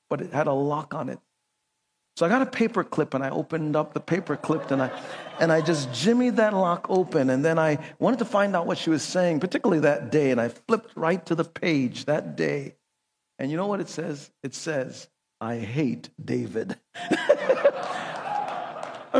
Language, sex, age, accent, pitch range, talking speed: English, male, 50-69, American, 160-235 Hz, 195 wpm